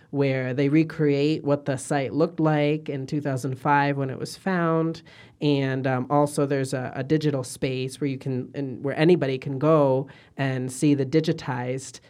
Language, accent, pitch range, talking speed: English, American, 135-155 Hz, 170 wpm